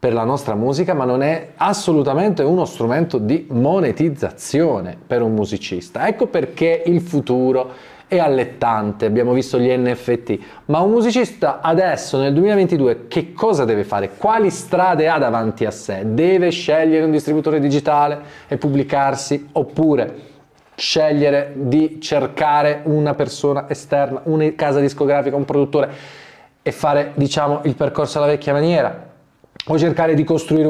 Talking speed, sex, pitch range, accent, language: 140 wpm, male, 125-160 Hz, native, Italian